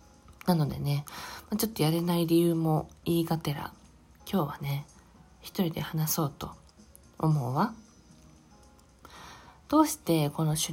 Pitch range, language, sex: 150-200 Hz, Japanese, female